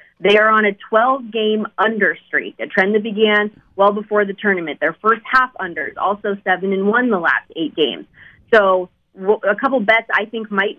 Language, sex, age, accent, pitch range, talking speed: English, female, 30-49, American, 185-220 Hz, 190 wpm